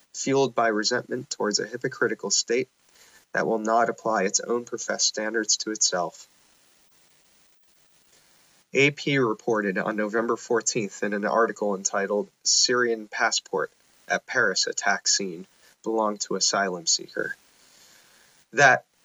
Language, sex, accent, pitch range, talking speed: English, male, American, 105-135 Hz, 115 wpm